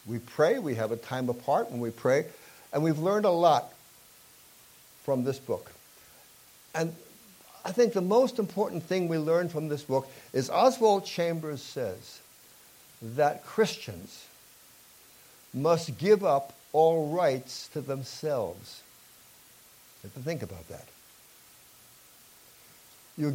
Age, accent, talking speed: 60-79, American, 130 wpm